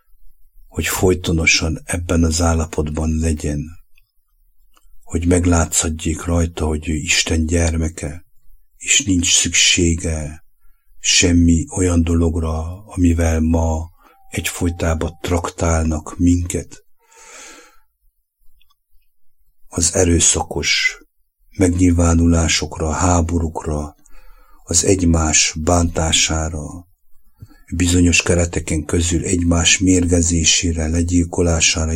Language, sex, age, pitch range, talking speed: English, male, 60-79, 80-90 Hz, 70 wpm